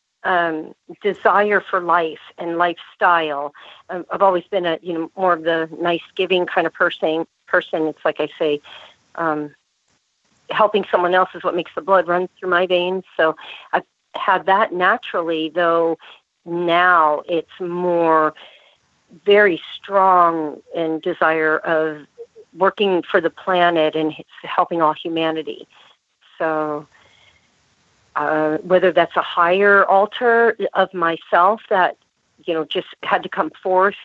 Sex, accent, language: female, American, English